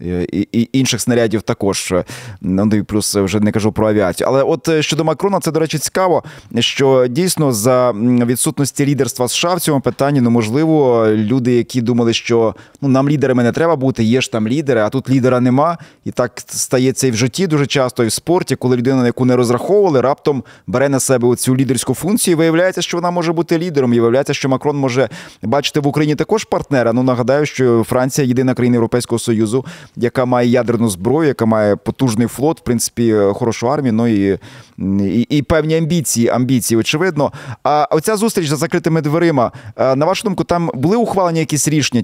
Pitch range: 120-155 Hz